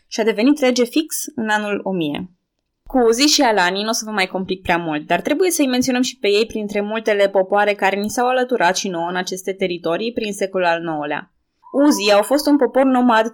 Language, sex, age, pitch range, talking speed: Romanian, female, 20-39, 180-230 Hz, 220 wpm